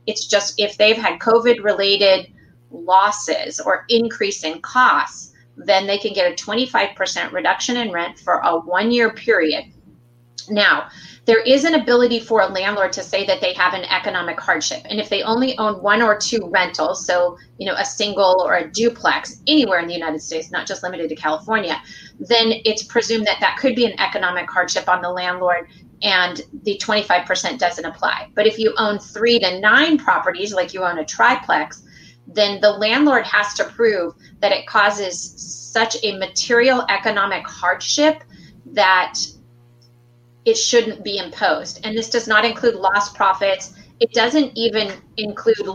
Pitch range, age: 185-230 Hz, 30-49